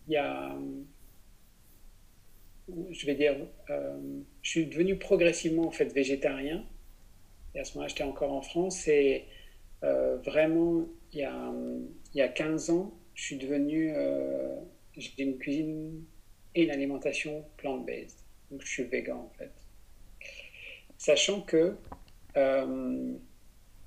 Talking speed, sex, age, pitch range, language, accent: 135 wpm, male, 50-69, 100-155 Hz, French, French